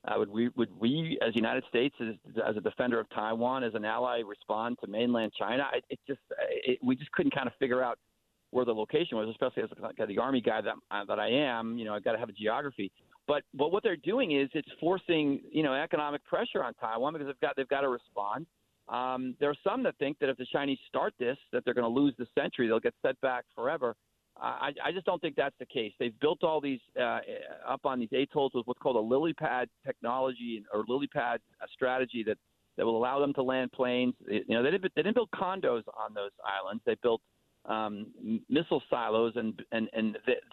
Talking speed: 235 wpm